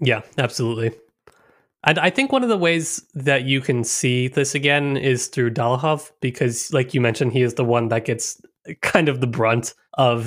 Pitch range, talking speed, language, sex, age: 115-140 Hz, 195 wpm, English, male, 20-39